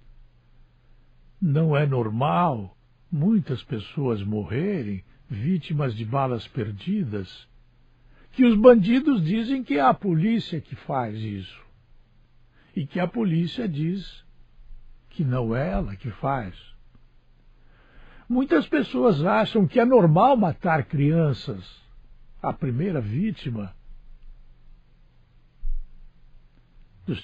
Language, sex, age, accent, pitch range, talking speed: Portuguese, male, 60-79, Brazilian, 100-170 Hz, 95 wpm